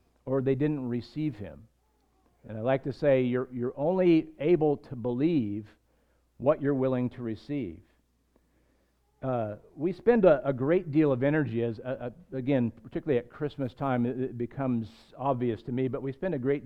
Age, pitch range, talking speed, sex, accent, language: 50-69, 120-150 Hz, 175 wpm, male, American, English